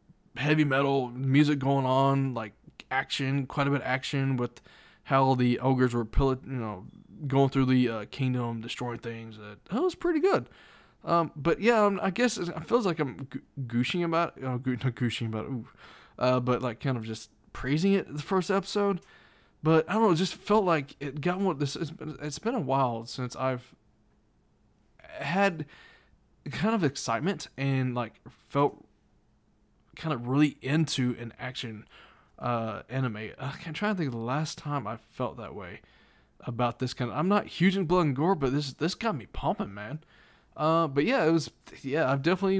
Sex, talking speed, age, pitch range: male, 185 wpm, 20-39, 125-160 Hz